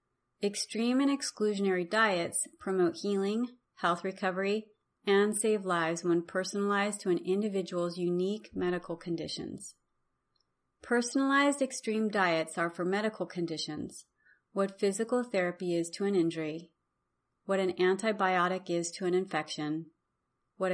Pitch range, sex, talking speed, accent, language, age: 170-210 Hz, female, 120 wpm, American, English, 30-49